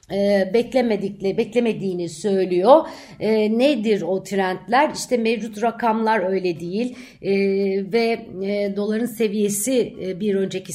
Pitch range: 190-240 Hz